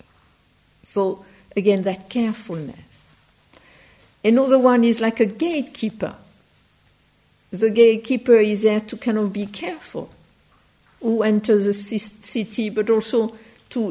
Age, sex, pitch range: 60-79, female, 210-255 Hz